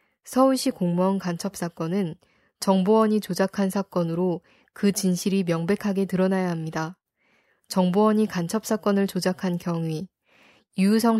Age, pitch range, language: 20-39, 180-210 Hz, Korean